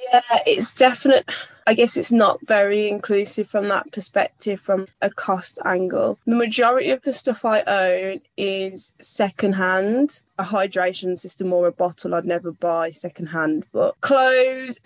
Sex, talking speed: female, 150 wpm